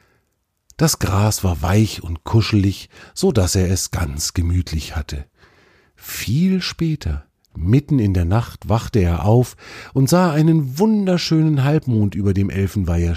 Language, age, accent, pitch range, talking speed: German, 50-69, German, 85-115 Hz, 135 wpm